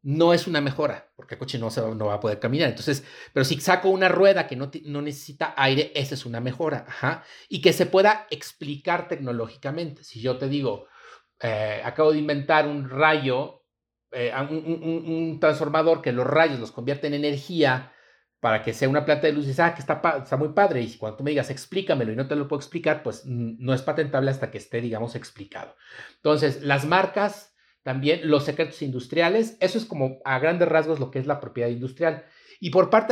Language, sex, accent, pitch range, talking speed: Spanish, male, Mexican, 130-165 Hz, 210 wpm